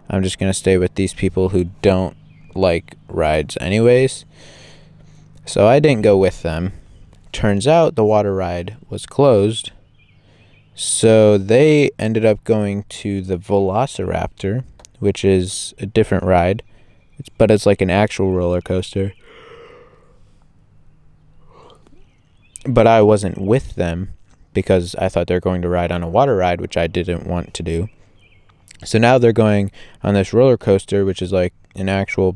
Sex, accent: male, American